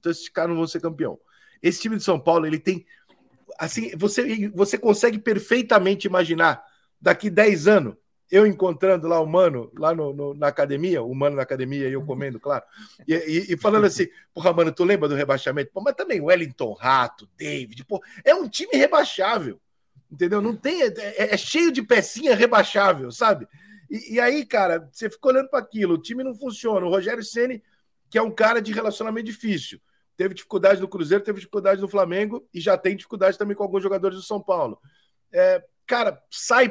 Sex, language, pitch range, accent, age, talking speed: male, Portuguese, 165-220 Hz, Brazilian, 50-69, 195 wpm